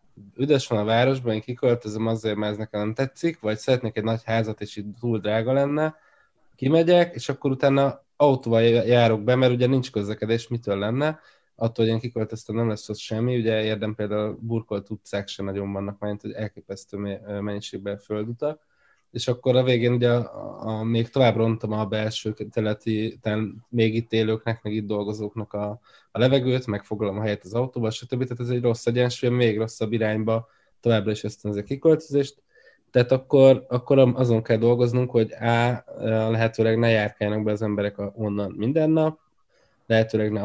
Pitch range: 105-125 Hz